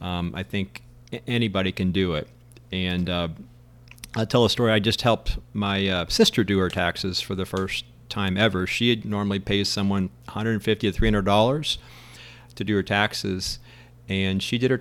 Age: 40-59